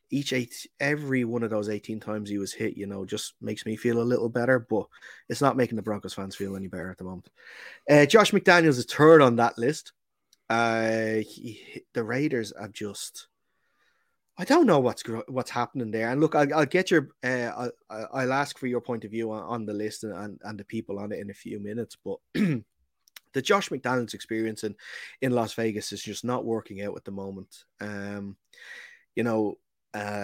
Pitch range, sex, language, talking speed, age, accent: 105-125 Hz, male, English, 205 wpm, 20-39, Irish